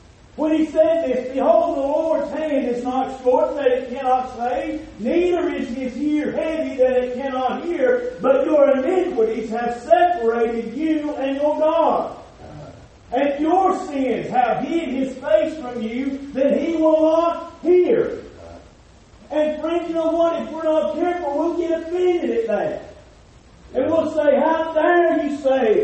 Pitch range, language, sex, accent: 270-330 Hz, English, male, American